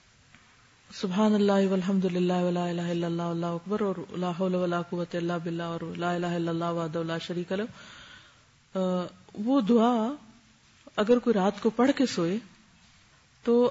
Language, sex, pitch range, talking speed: Urdu, female, 180-235 Hz, 115 wpm